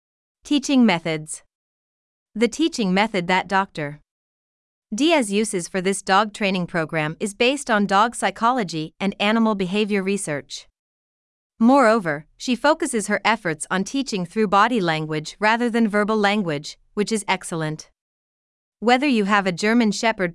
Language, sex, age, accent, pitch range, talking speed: English, female, 30-49, American, 170-230 Hz, 135 wpm